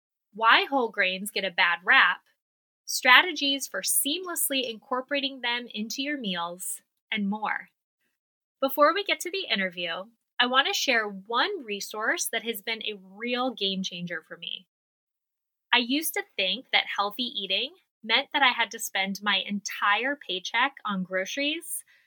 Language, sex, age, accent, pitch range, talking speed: English, female, 10-29, American, 200-275 Hz, 150 wpm